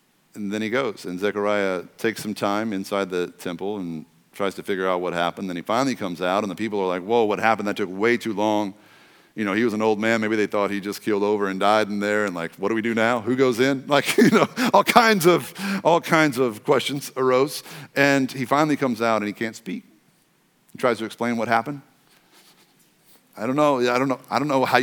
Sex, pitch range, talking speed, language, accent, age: male, 110-150 Hz, 245 wpm, English, American, 50-69